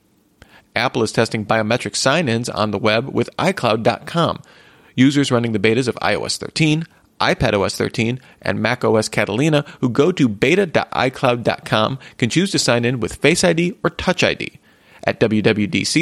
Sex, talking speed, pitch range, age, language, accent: male, 145 wpm, 110-145 Hz, 30-49, English, American